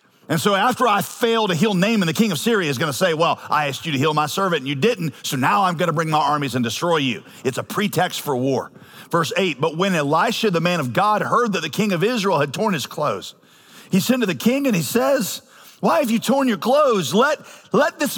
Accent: American